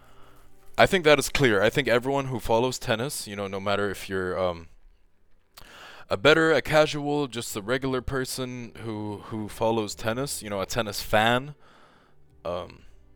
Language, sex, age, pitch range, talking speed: English, male, 20-39, 95-120 Hz, 165 wpm